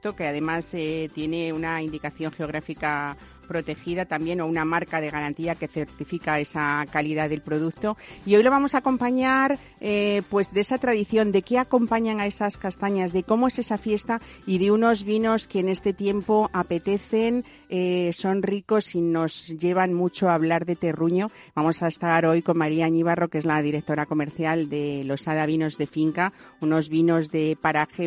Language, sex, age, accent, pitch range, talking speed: Spanish, female, 50-69, Spanish, 160-200 Hz, 175 wpm